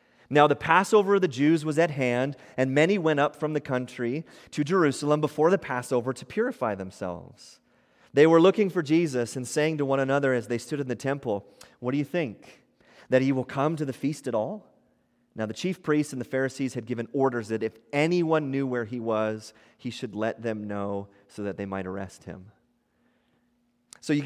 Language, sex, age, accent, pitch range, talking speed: English, male, 30-49, American, 130-160 Hz, 205 wpm